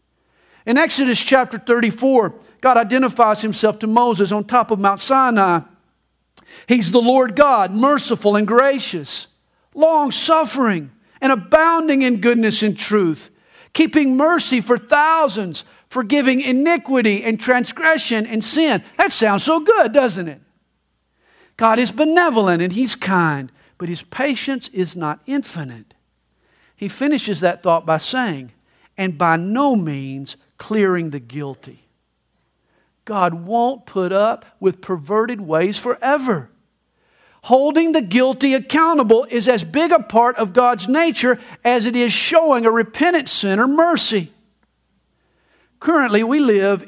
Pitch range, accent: 175-265 Hz, American